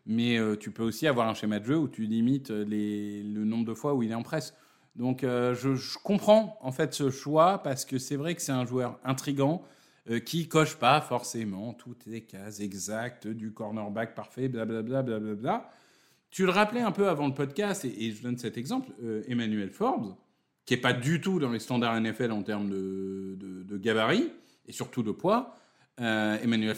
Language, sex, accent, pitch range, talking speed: French, male, French, 110-145 Hz, 215 wpm